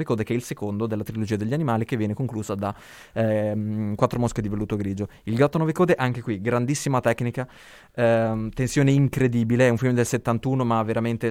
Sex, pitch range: male, 110-125 Hz